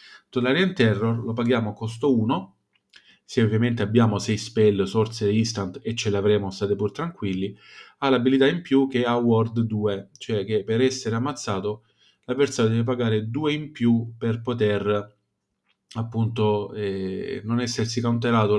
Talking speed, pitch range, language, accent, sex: 150 wpm, 110-130 Hz, Italian, native, male